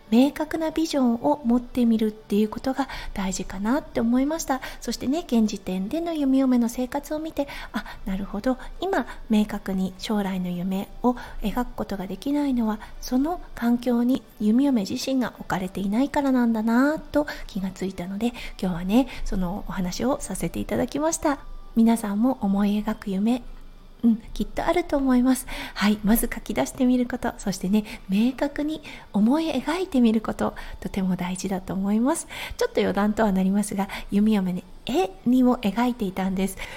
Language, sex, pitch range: Japanese, female, 200-260 Hz